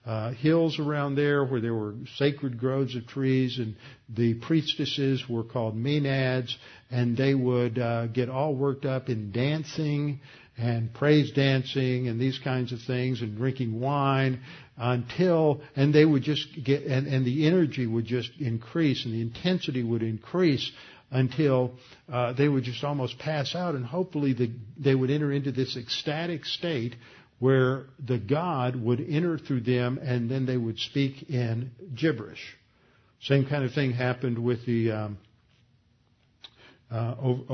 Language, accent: English, American